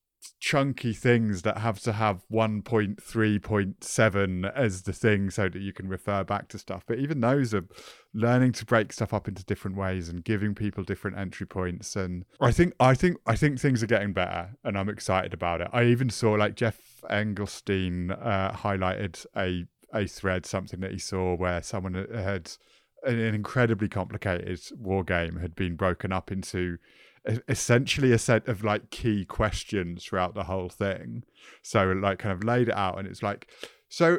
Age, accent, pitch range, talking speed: 30-49, British, 95-120 Hz, 180 wpm